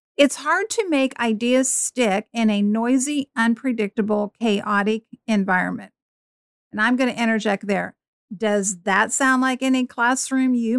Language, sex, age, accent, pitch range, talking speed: English, female, 50-69, American, 210-265 Hz, 140 wpm